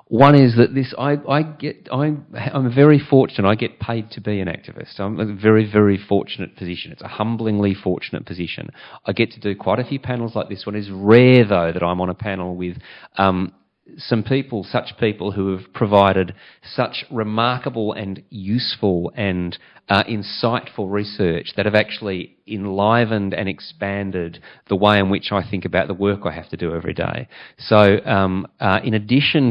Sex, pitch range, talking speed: male, 90-110 Hz, 185 wpm